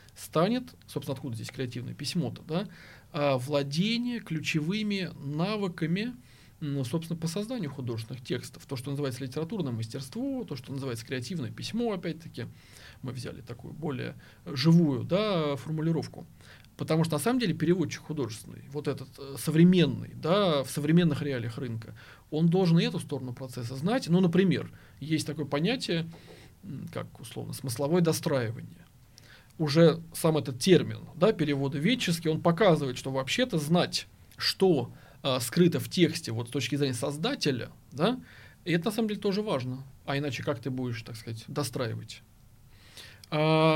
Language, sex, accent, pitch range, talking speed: Russian, male, native, 130-170 Hz, 135 wpm